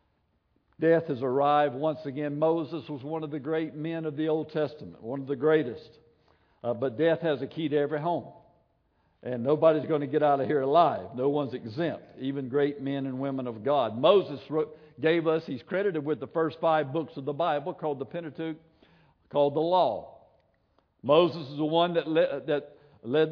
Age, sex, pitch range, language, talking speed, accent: 60-79, male, 140-170 Hz, English, 195 wpm, American